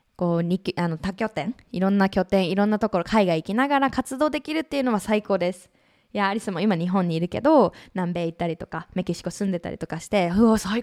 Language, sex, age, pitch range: Japanese, female, 20-39, 185-280 Hz